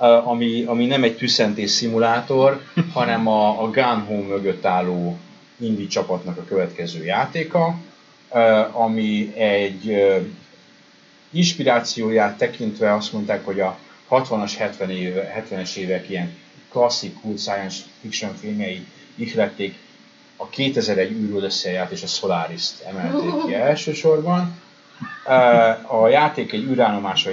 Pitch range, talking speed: 95-135 Hz, 110 wpm